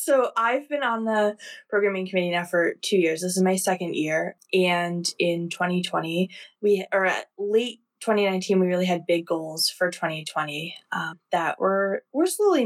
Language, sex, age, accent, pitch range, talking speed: English, female, 20-39, American, 175-210 Hz, 170 wpm